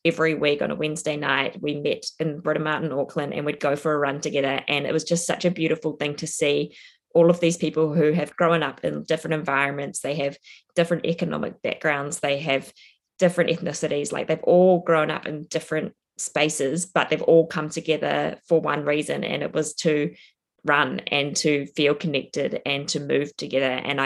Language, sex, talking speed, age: English, female, 195 wpm, 20-39